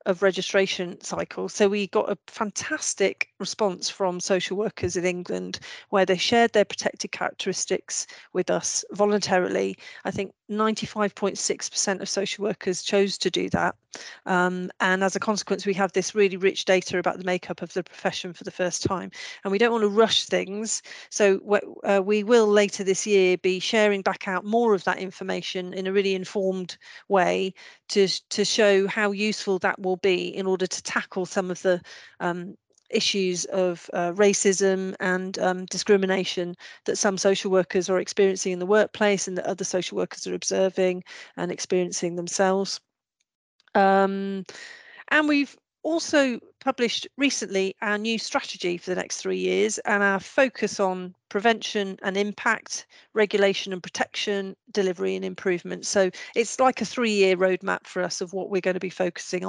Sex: female